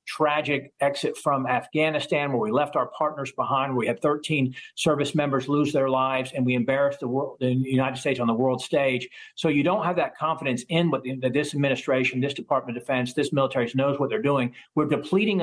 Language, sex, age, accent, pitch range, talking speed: English, male, 50-69, American, 130-160 Hz, 210 wpm